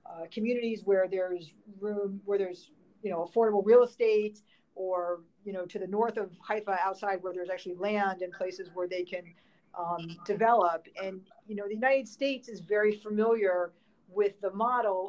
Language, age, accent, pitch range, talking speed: English, 40-59, American, 180-210 Hz, 175 wpm